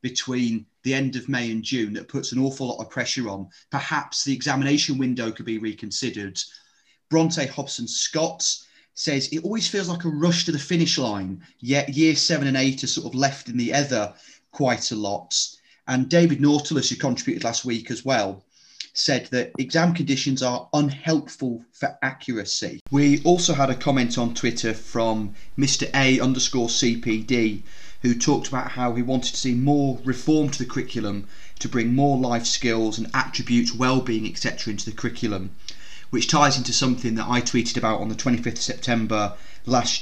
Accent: British